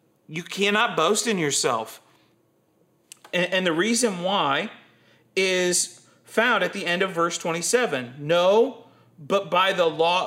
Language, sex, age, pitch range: English, male, 40-59, 170-215 Hz